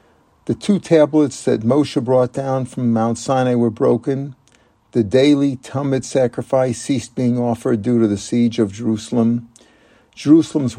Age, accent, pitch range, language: 50-69, American, 115-135 Hz, English